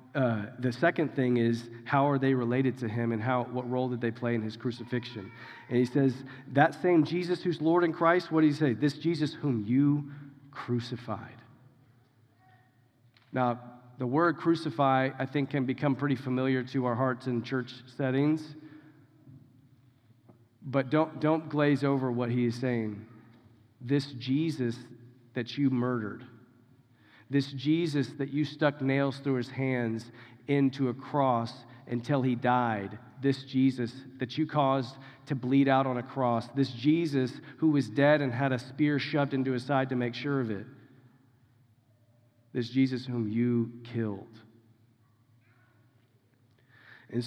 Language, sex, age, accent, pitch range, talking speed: English, male, 40-59, American, 120-145 Hz, 150 wpm